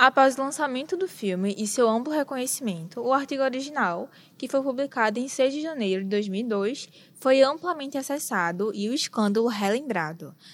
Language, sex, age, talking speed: Portuguese, female, 10-29, 160 wpm